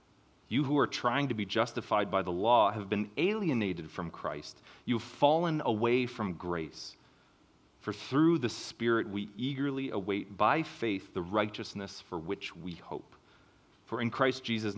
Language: English